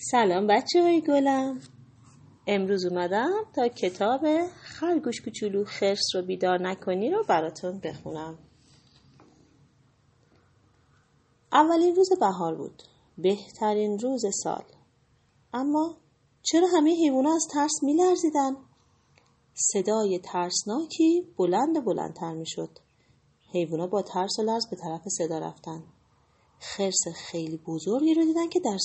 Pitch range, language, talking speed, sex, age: 165-265 Hz, Persian, 110 wpm, female, 30-49